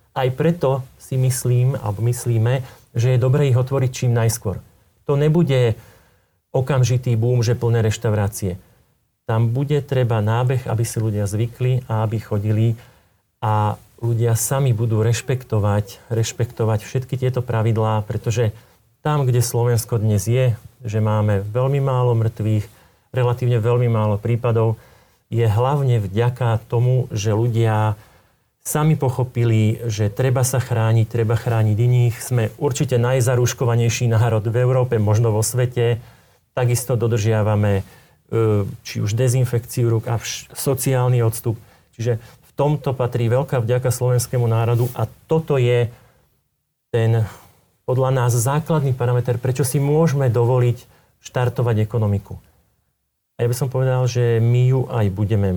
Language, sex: Slovak, male